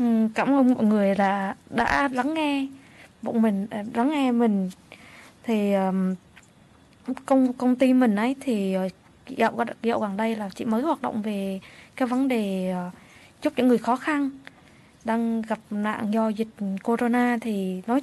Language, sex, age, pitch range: Japanese, female, 20-39, 205-265 Hz